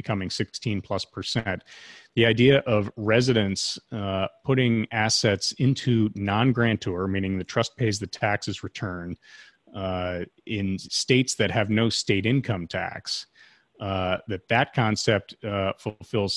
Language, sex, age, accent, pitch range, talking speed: English, male, 30-49, American, 95-115 Hz, 125 wpm